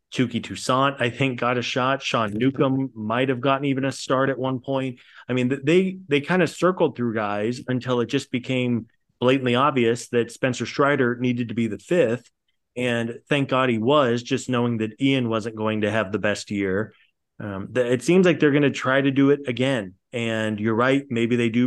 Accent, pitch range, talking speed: American, 110-130 Hz, 210 wpm